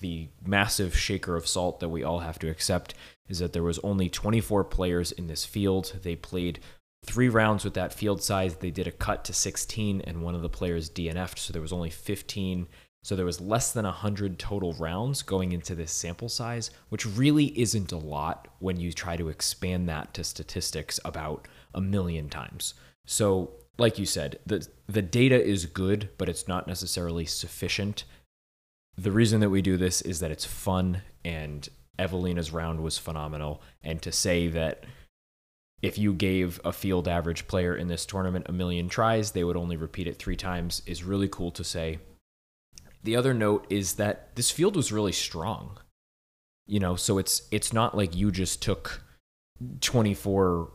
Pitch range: 85-100 Hz